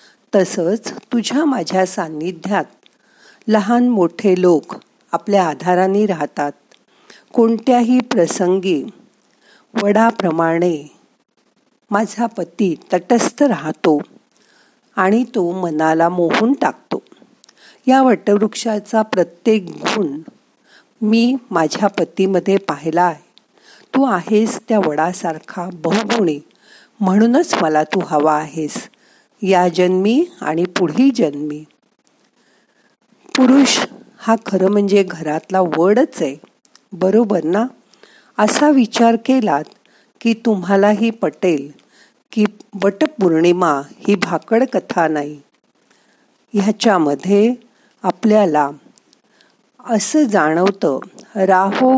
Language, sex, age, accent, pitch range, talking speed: Marathi, female, 50-69, native, 175-230 Hz, 85 wpm